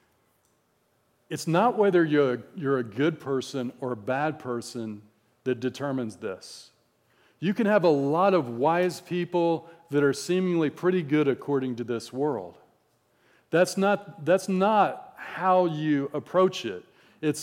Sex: male